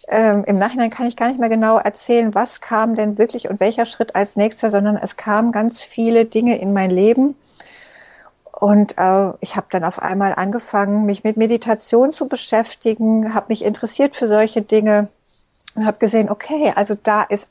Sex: female